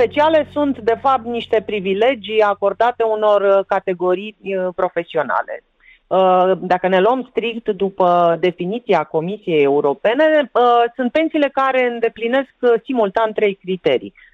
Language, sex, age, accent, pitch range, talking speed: Romanian, female, 30-49, native, 170-235 Hz, 105 wpm